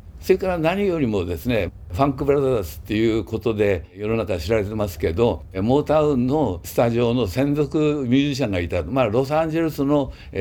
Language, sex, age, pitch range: Japanese, male, 60-79, 110-155 Hz